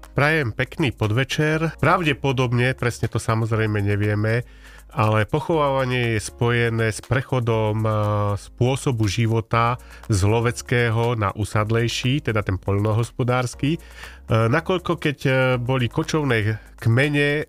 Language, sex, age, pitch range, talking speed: Slovak, male, 30-49, 110-130 Hz, 95 wpm